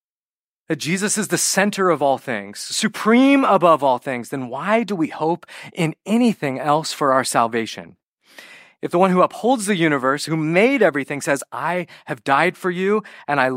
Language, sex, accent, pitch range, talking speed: English, male, American, 135-190 Hz, 180 wpm